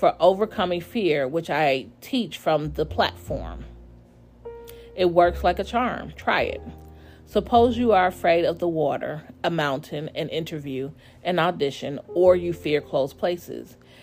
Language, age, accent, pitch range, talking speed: English, 40-59, American, 140-180 Hz, 145 wpm